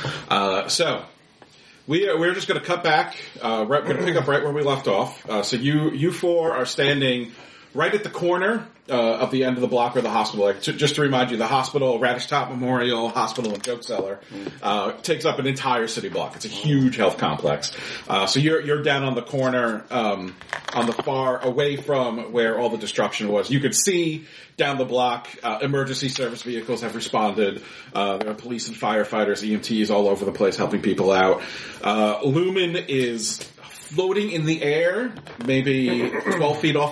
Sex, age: male, 40-59